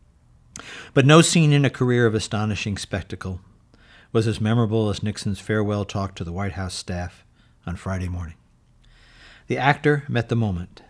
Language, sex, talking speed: English, male, 160 wpm